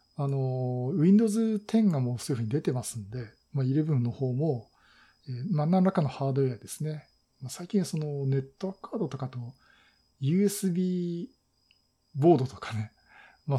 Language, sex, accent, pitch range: Japanese, male, native, 125-165 Hz